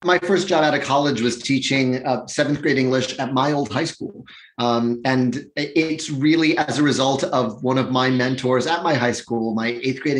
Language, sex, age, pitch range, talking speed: English, male, 30-49, 125-145 Hz, 210 wpm